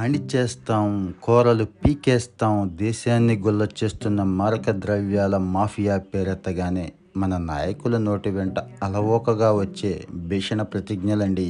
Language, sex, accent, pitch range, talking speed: Telugu, male, native, 95-110 Hz, 90 wpm